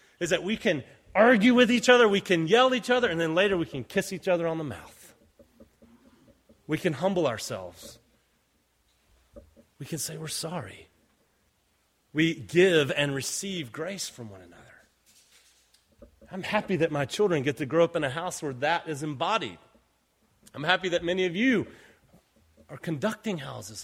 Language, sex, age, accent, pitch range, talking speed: English, male, 30-49, American, 115-175 Hz, 165 wpm